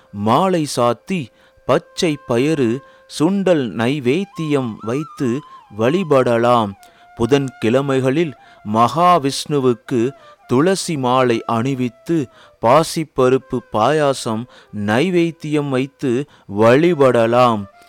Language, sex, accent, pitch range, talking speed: Tamil, male, native, 130-175 Hz, 65 wpm